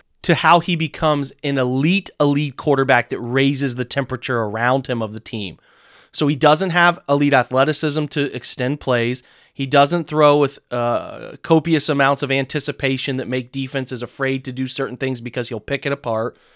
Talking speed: 175 wpm